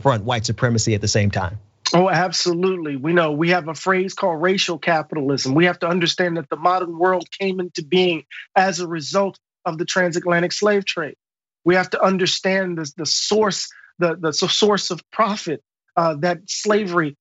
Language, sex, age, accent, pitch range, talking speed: English, male, 40-59, American, 175-215 Hz, 170 wpm